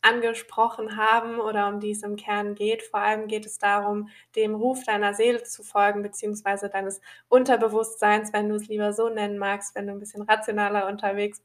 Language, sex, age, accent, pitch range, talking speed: German, female, 20-39, German, 205-230 Hz, 190 wpm